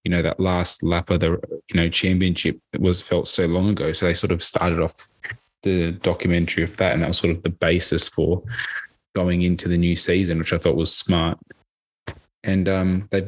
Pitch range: 85-95 Hz